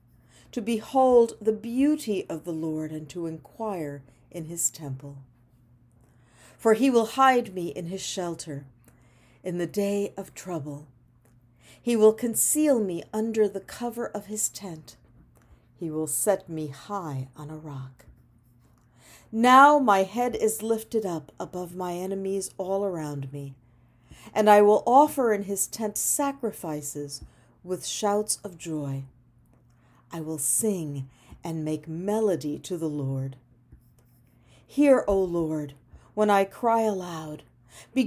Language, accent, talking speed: English, American, 135 wpm